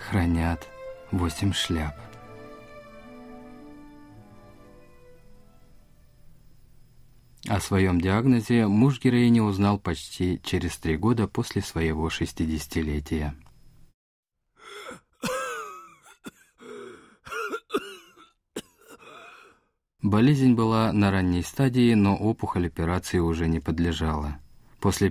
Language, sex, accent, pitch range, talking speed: Russian, male, native, 85-120 Hz, 65 wpm